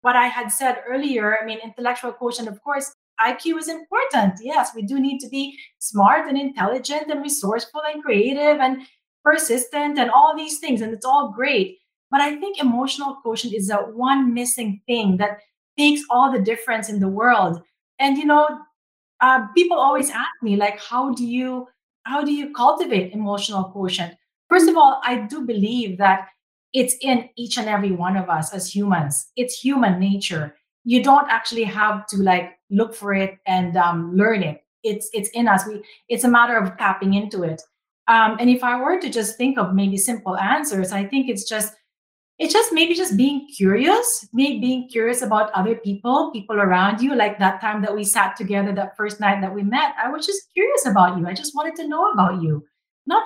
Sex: female